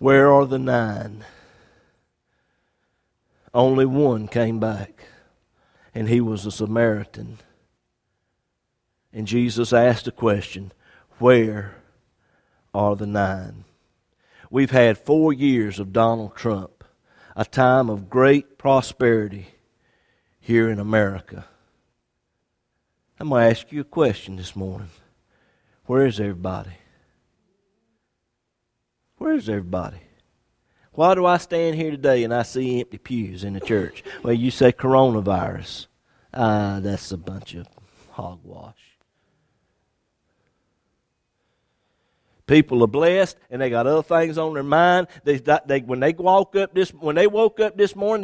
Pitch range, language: 105-155 Hz, English